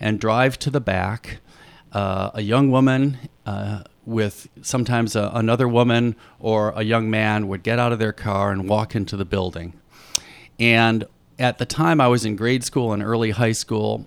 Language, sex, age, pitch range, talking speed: English, male, 50-69, 105-125 Hz, 180 wpm